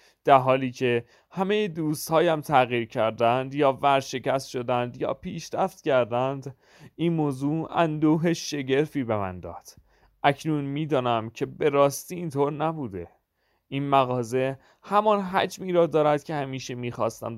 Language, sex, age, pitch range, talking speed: Persian, male, 30-49, 115-160 Hz, 130 wpm